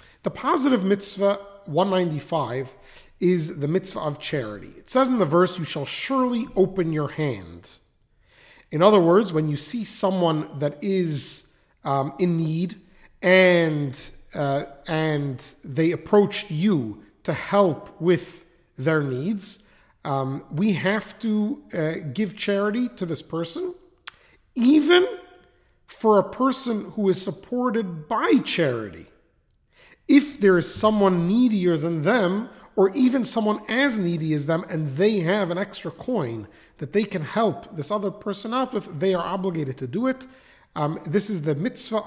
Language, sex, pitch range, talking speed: English, male, 155-210 Hz, 145 wpm